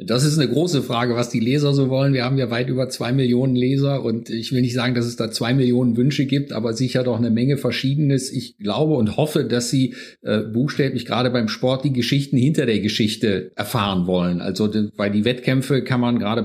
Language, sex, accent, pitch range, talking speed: German, male, German, 110-125 Hz, 225 wpm